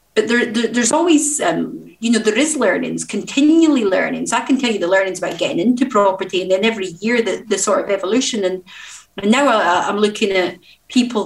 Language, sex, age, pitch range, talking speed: English, female, 30-49, 185-230 Hz, 195 wpm